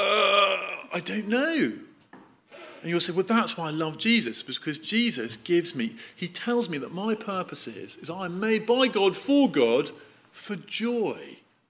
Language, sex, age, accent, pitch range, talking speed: English, male, 40-59, British, 160-210 Hz, 165 wpm